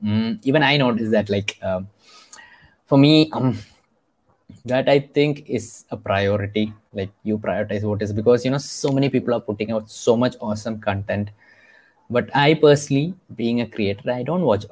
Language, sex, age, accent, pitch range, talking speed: English, male, 20-39, Indian, 100-120 Hz, 175 wpm